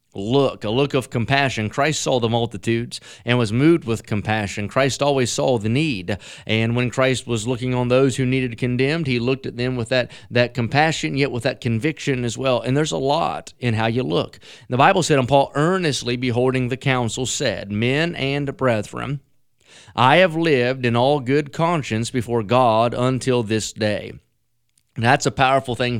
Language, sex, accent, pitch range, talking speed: English, male, American, 115-140 Hz, 185 wpm